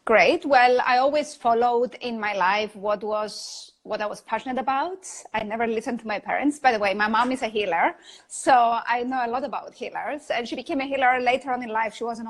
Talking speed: 230 wpm